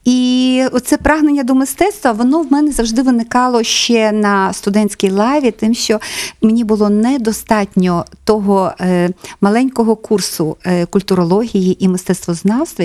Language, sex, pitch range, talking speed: Ukrainian, female, 185-240 Hz, 115 wpm